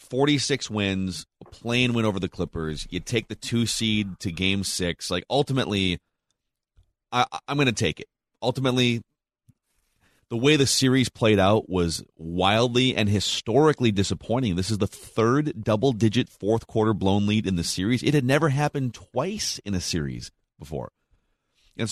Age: 30-49